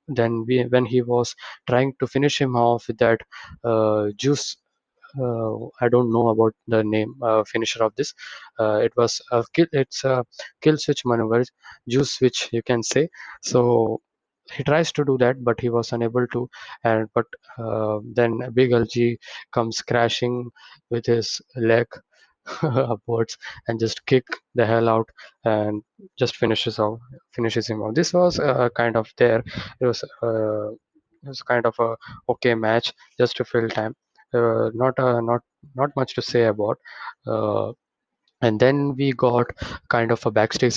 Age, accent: 20-39, Indian